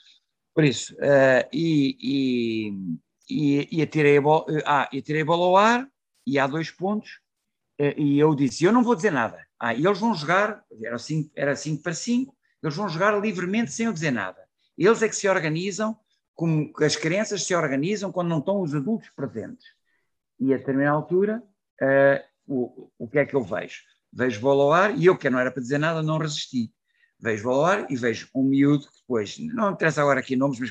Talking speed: 195 wpm